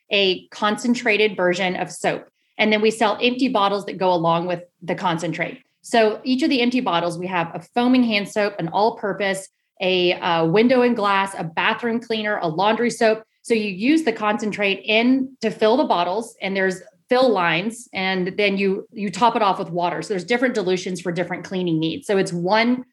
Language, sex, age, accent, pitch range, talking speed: English, female, 30-49, American, 190-235 Hz, 200 wpm